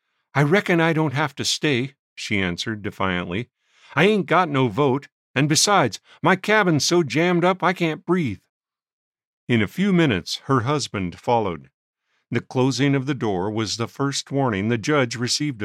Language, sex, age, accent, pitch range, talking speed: English, male, 50-69, American, 110-170 Hz, 170 wpm